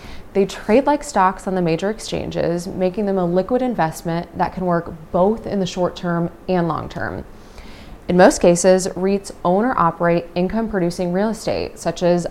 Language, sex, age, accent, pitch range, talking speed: English, female, 20-39, American, 170-200 Hz, 165 wpm